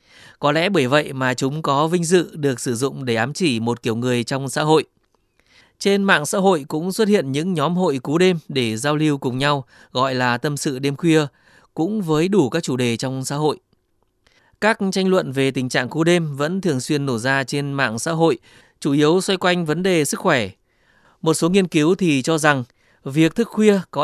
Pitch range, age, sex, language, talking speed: 130-175 Hz, 20-39, male, Vietnamese, 220 wpm